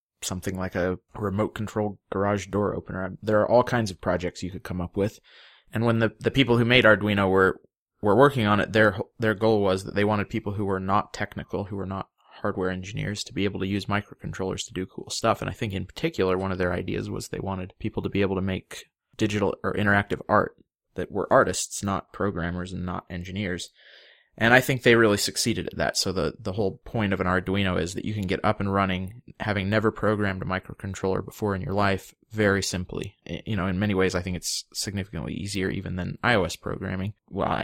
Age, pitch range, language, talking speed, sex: 20-39, 95-110 Hz, English, 220 wpm, male